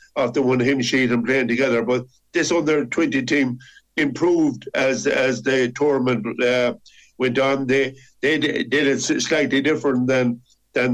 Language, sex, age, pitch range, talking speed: English, male, 60-79, 125-140 Hz, 150 wpm